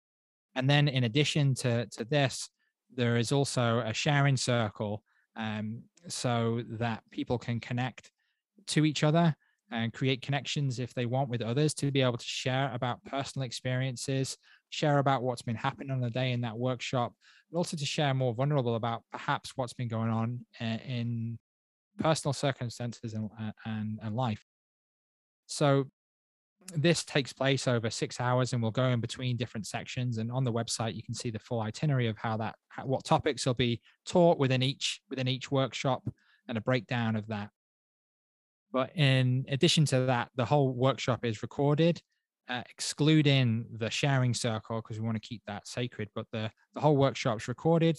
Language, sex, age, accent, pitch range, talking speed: English, male, 20-39, British, 115-135 Hz, 170 wpm